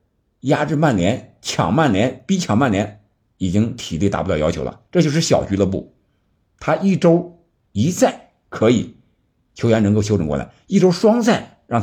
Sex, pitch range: male, 85-120 Hz